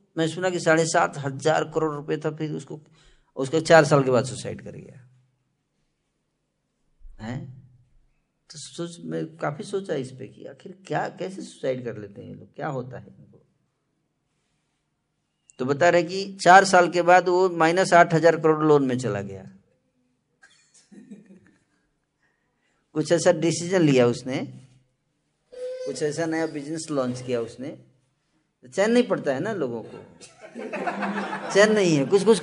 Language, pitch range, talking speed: Hindi, 130-185 Hz, 150 wpm